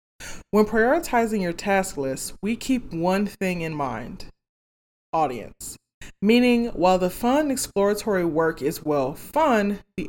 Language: English